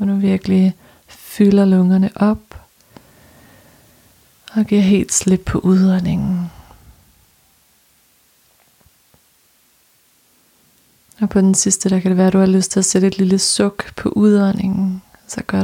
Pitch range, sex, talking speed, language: 185-205 Hz, female, 125 wpm, Danish